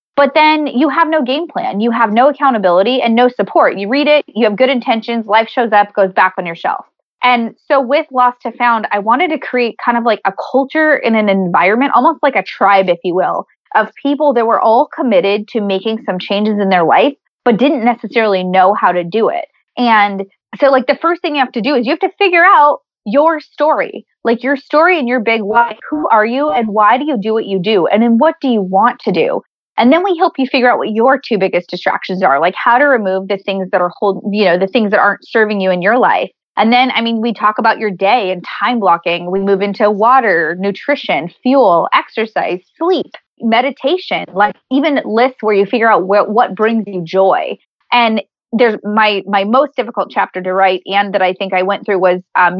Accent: American